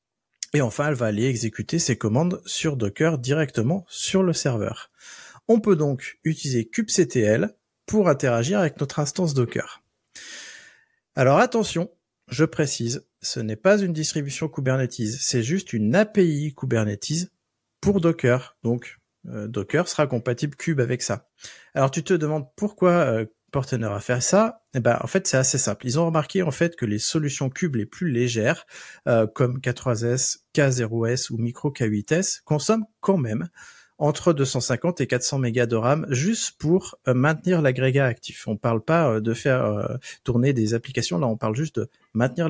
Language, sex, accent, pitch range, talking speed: French, male, French, 120-165 Hz, 165 wpm